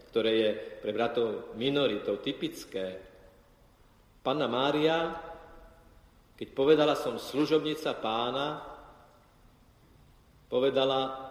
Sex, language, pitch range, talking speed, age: male, Slovak, 125-180 Hz, 75 wpm, 50-69